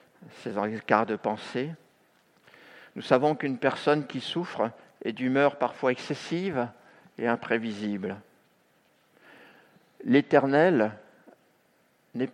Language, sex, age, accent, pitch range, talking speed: French, male, 50-69, French, 115-155 Hz, 90 wpm